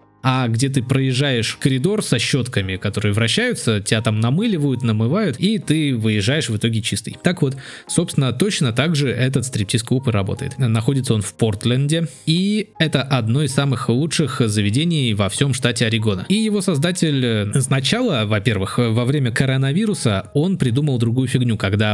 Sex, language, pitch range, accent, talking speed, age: male, Russian, 110-145 Hz, native, 155 wpm, 20-39